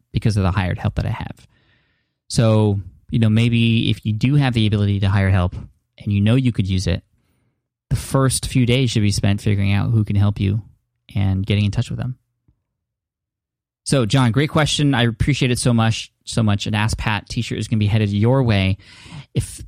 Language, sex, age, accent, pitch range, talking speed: English, male, 20-39, American, 105-130 Hz, 215 wpm